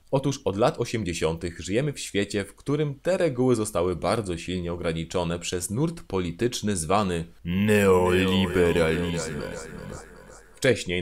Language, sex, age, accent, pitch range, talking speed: Polish, male, 30-49, native, 85-110 Hz, 115 wpm